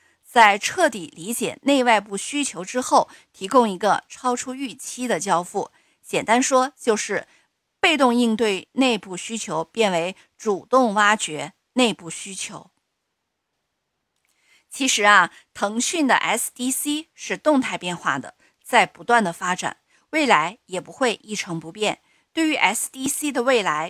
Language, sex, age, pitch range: Chinese, female, 50-69, 190-260 Hz